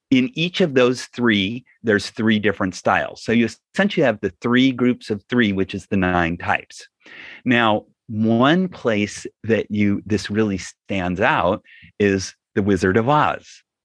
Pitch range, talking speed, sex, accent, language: 105-140 Hz, 160 wpm, male, American, English